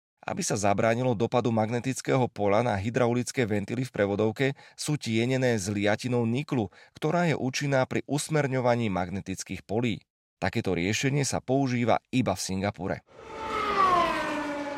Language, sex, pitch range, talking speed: Slovak, male, 105-135 Hz, 120 wpm